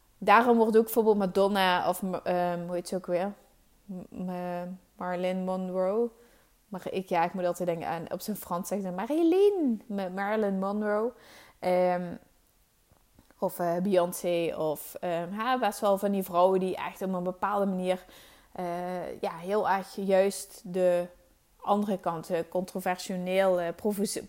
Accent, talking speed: Dutch, 145 wpm